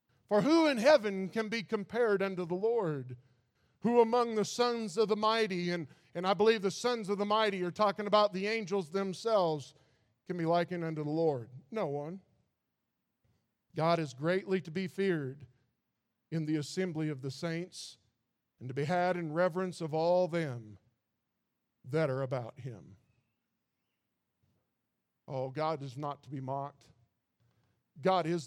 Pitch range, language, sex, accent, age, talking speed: 135-185 Hz, English, male, American, 50-69, 155 wpm